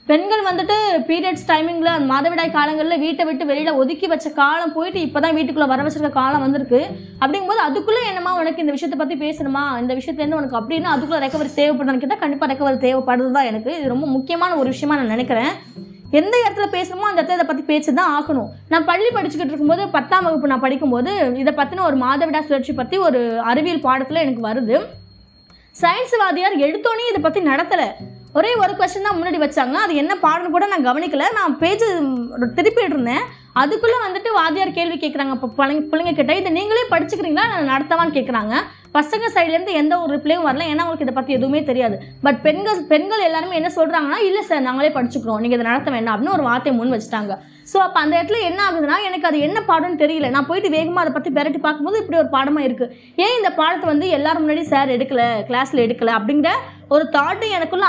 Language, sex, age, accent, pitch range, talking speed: Tamil, female, 20-39, native, 275-350 Hz, 185 wpm